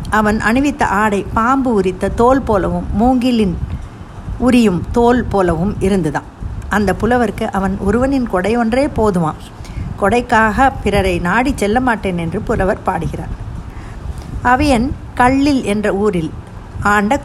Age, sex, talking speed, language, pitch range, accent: 60-79, female, 110 wpm, Tamil, 195-250 Hz, native